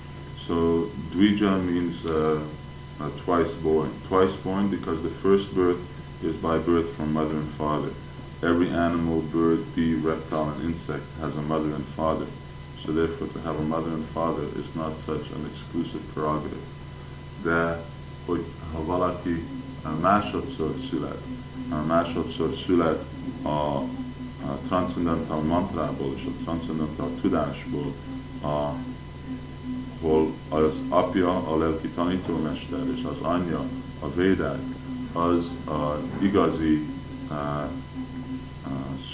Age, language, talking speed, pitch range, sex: 20-39, Hungarian, 85 wpm, 70-85 Hz, male